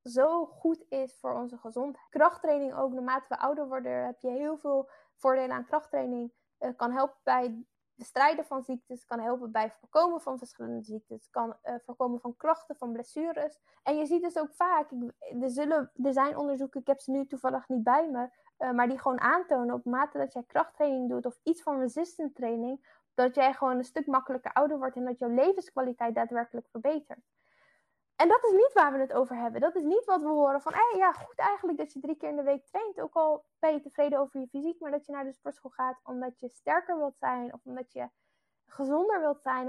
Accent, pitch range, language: Dutch, 245-300 Hz, Dutch